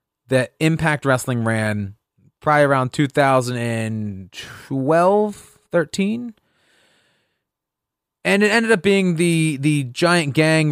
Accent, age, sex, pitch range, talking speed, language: American, 30-49, male, 125-175 Hz, 95 wpm, English